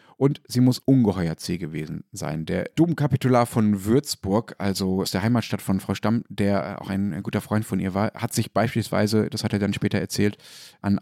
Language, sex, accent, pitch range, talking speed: German, male, German, 95-115 Hz, 195 wpm